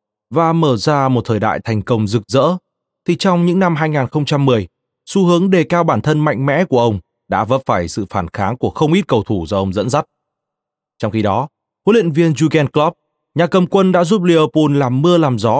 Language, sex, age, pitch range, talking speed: Vietnamese, male, 20-39, 110-160 Hz, 225 wpm